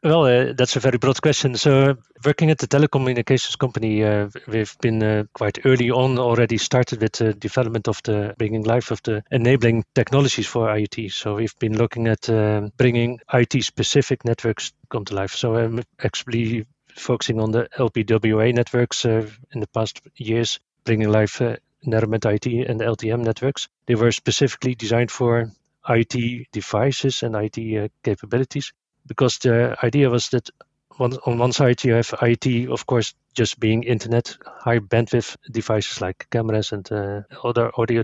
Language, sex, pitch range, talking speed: English, male, 110-130 Hz, 165 wpm